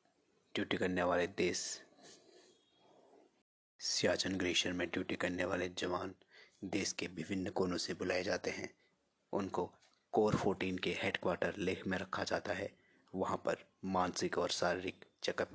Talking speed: 135 wpm